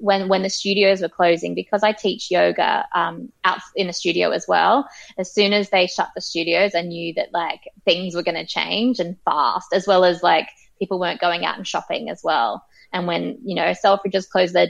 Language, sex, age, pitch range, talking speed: English, female, 20-39, 175-200 Hz, 220 wpm